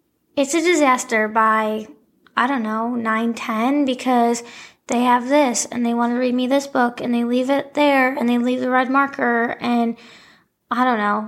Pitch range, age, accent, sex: 225-260 Hz, 10-29, American, female